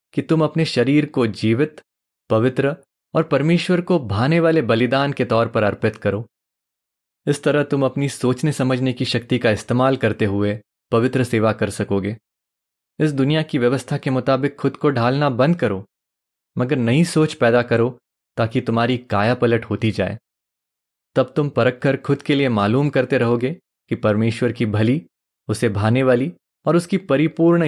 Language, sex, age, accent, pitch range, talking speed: Hindi, male, 20-39, native, 110-140 Hz, 165 wpm